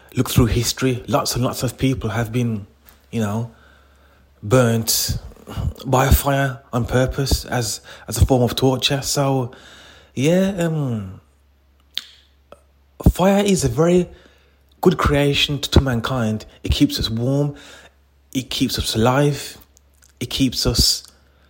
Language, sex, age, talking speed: English, male, 30-49, 130 wpm